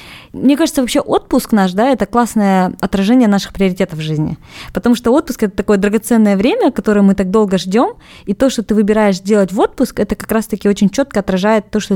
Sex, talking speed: female, 205 wpm